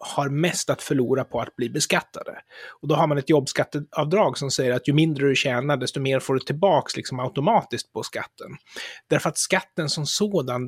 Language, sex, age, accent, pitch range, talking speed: Swedish, male, 30-49, native, 130-165 Hz, 195 wpm